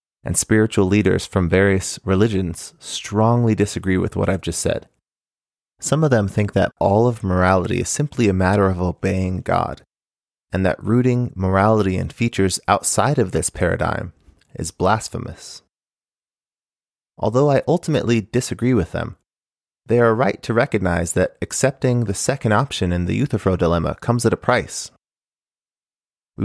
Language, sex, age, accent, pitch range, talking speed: English, male, 30-49, American, 95-120 Hz, 150 wpm